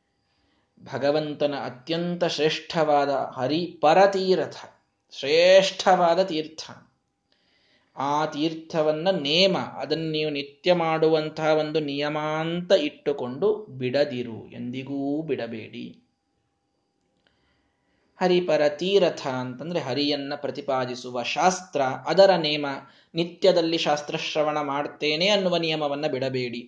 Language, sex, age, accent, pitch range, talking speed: Kannada, male, 20-39, native, 130-160 Hz, 70 wpm